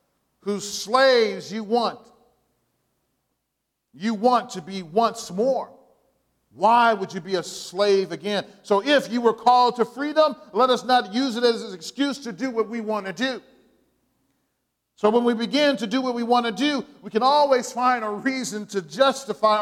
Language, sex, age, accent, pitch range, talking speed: English, male, 50-69, American, 200-260 Hz, 175 wpm